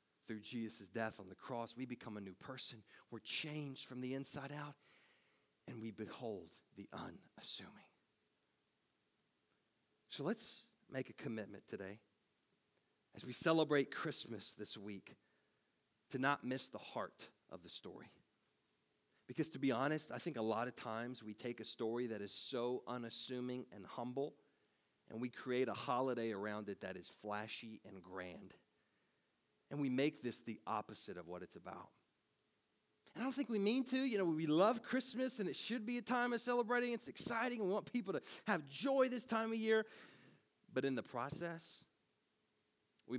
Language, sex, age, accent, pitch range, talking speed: English, male, 40-59, American, 110-160 Hz, 170 wpm